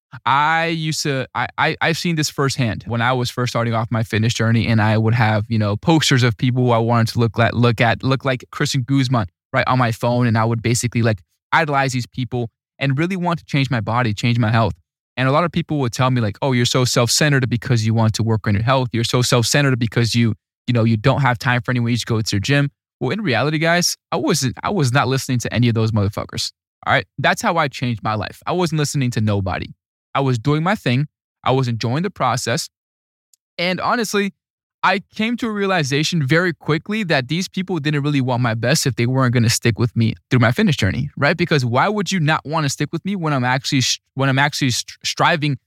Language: English